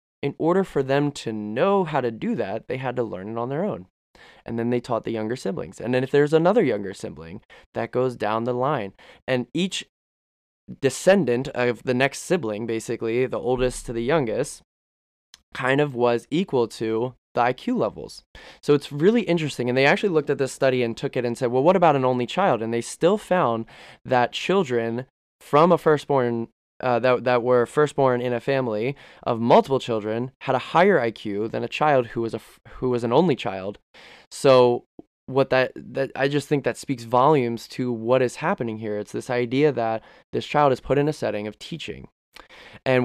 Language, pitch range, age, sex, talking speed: English, 115-140 Hz, 20-39, male, 205 wpm